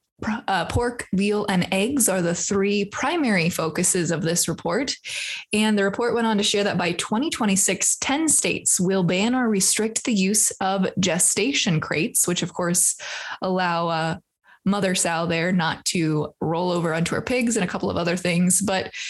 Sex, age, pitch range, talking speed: female, 20-39, 180-230 Hz, 180 wpm